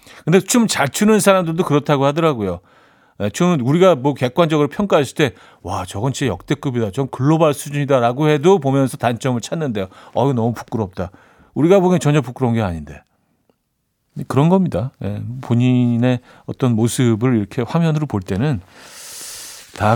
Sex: male